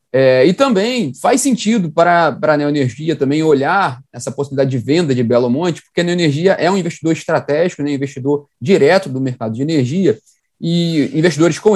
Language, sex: Portuguese, male